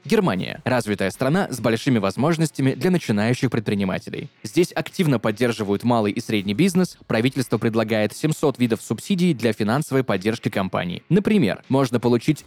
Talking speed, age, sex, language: 135 wpm, 20-39, male, Russian